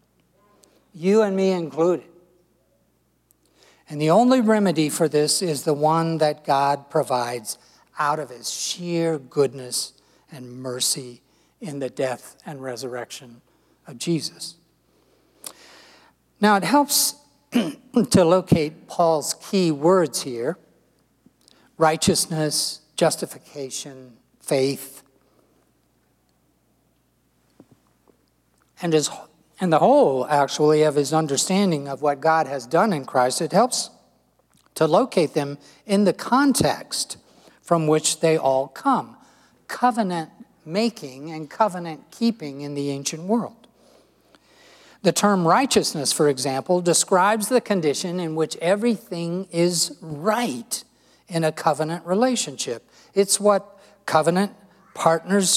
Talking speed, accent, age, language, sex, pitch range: 105 wpm, American, 60-79, English, male, 145-190 Hz